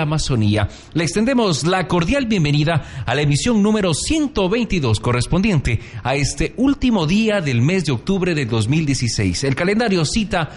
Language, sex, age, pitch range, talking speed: Spanish, male, 40-59, 125-180 Hz, 140 wpm